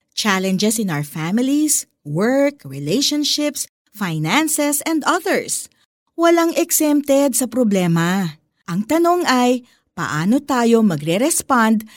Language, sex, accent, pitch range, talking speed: Filipino, female, native, 190-280 Hz, 95 wpm